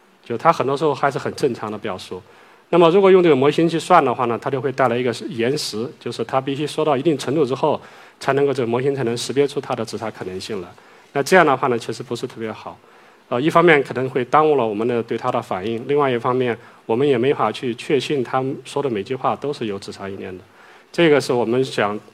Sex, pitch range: male, 110-140 Hz